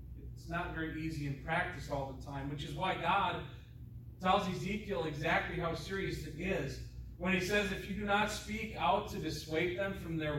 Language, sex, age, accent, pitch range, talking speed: English, male, 40-59, American, 140-205 Hz, 195 wpm